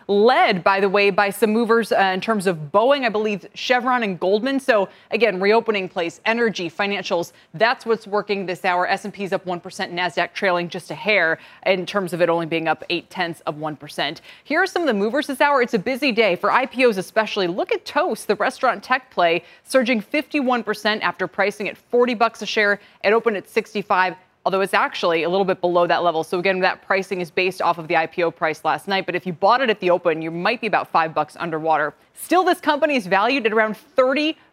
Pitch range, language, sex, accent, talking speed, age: 175-230 Hz, English, female, American, 220 wpm, 20-39